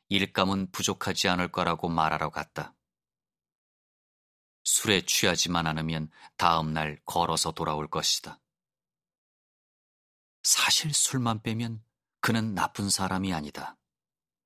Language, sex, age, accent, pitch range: Korean, male, 30-49, native, 80-95 Hz